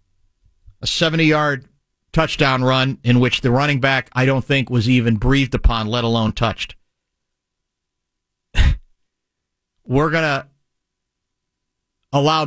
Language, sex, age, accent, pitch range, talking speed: English, male, 40-59, American, 115-140 Hz, 105 wpm